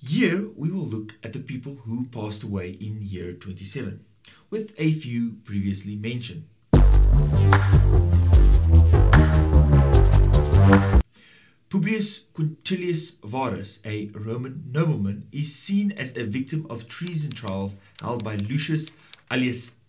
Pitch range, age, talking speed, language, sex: 105-155 Hz, 30-49, 110 wpm, English, male